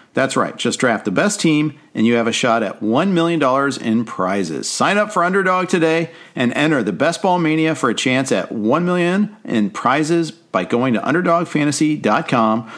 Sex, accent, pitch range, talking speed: male, American, 120-165 Hz, 190 wpm